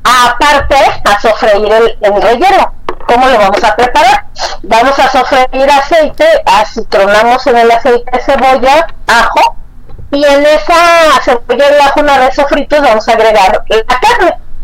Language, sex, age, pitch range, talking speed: Spanish, female, 30-49, 210-285 Hz, 150 wpm